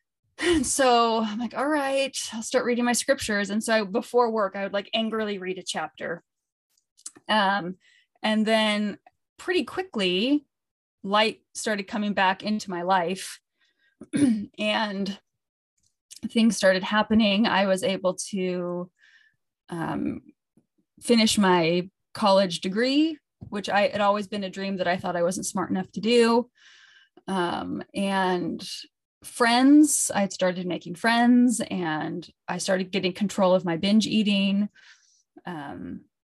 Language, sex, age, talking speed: English, female, 20-39, 135 wpm